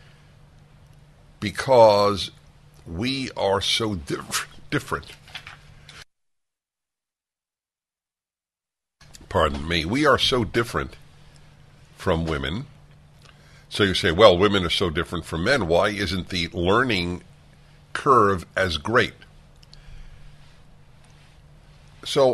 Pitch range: 80-110 Hz